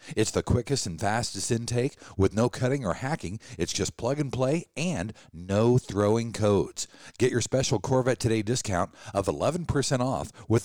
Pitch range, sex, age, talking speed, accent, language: 105-145 Hz, male, 50-69, 170 wpm, American, English